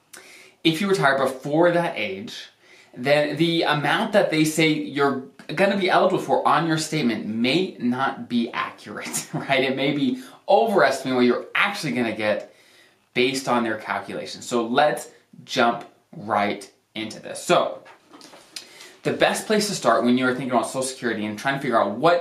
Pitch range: 120-155 Hz